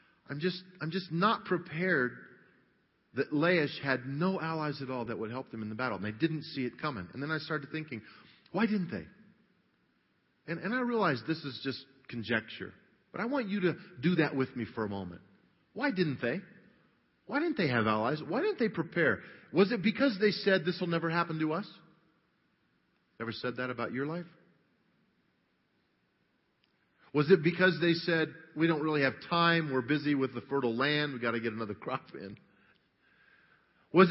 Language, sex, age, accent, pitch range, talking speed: English, male, 40-59, American, 115-170 Hz, 190 wpm